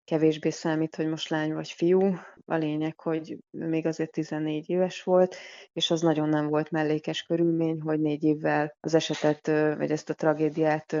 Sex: female